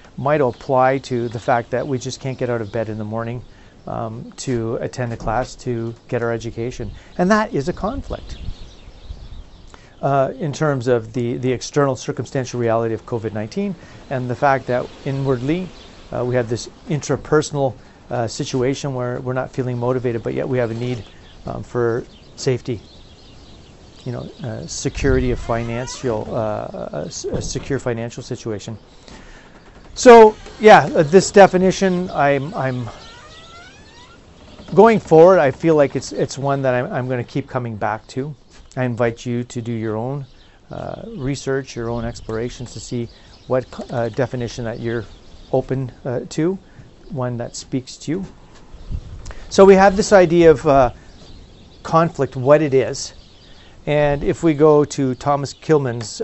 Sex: male